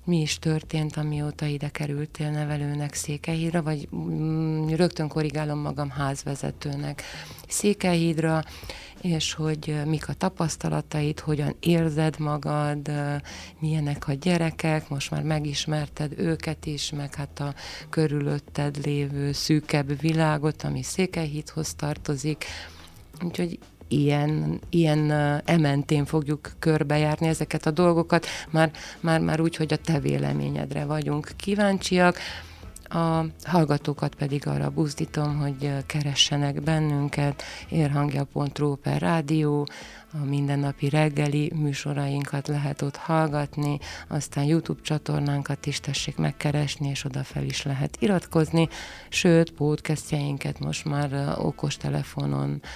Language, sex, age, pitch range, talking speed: Hungarian, female, 30-49, 145-160 Hz, 105 wpm